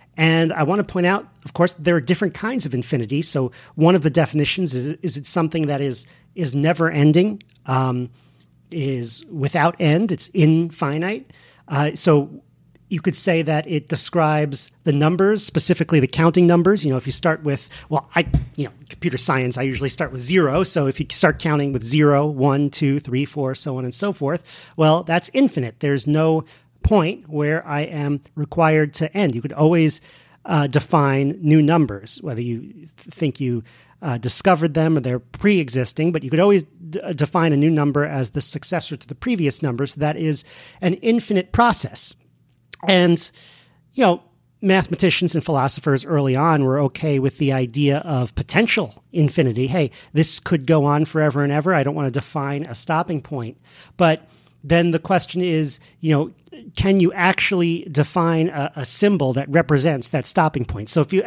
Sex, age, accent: male, 40-59, American